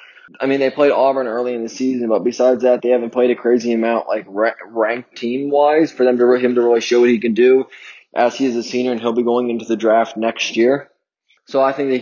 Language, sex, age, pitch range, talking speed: English, male, 20-39, 120-135 Hz, 255 wpm